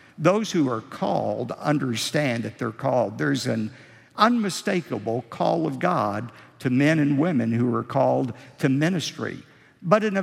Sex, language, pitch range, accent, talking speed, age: male, English, 135-205 Hz, American, 155 wpm, 50-69